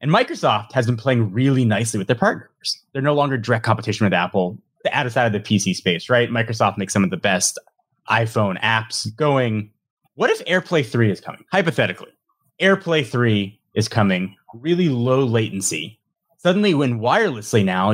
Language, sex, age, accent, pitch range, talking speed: English, male, 30-49, American, 110-140 Hz, 170 wpm